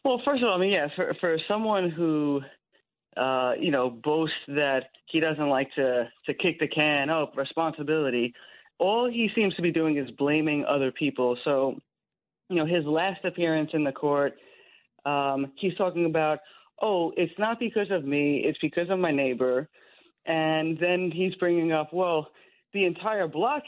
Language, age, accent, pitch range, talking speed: English, 30-49, American, 145-180 Hz, 175 wpm